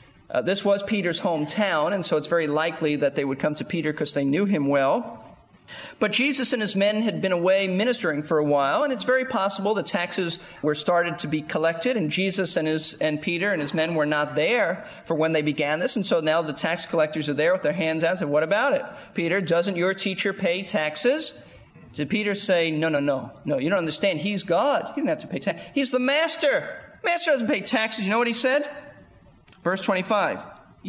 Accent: American